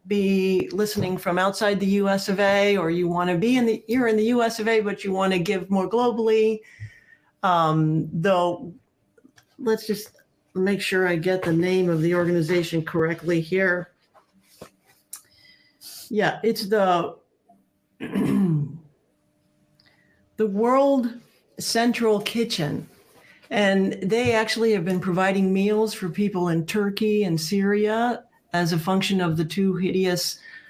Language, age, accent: English, 60-79, American